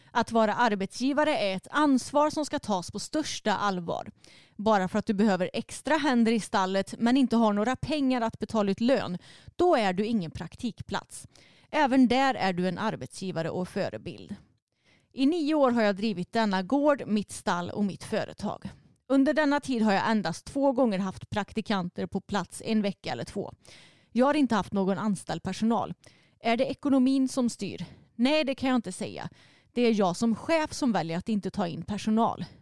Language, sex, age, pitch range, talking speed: Swedish, female, 30-49, 195-260 Hz, 190 wpm